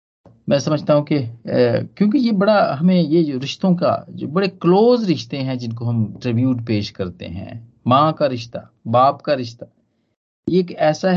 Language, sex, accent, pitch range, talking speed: Hindi, male, native, 110-170 Hz, 170 wpm